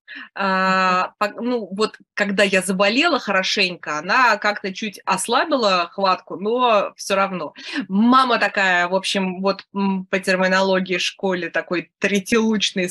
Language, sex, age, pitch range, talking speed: Russian, female, 20-39, 185-235 Hz, 120 wpm